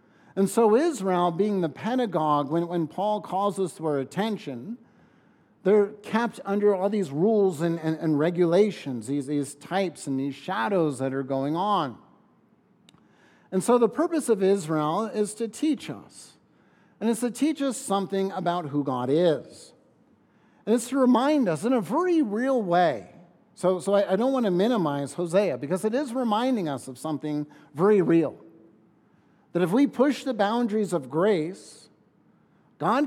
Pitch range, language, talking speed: 155-220 Hz, English, 165 wpm